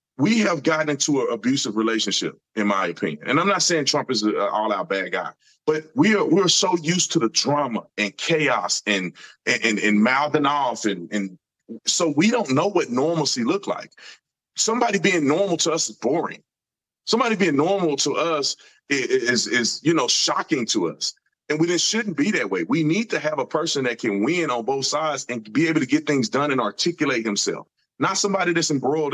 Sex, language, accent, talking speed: male, English, American, 205 wpm